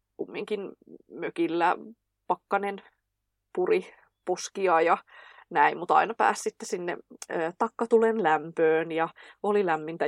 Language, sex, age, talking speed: English, female, 20-39, 100 wpm